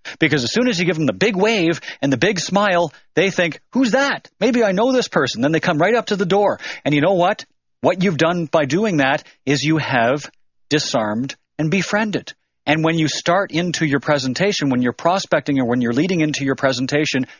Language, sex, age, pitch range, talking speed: English, male, 40-59, 130-170 Hz, 220 wpm